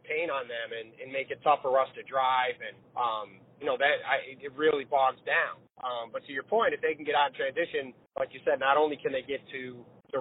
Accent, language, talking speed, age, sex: American, English, 260 wpm, 30-49, male